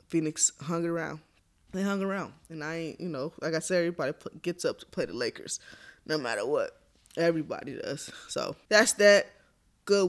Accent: American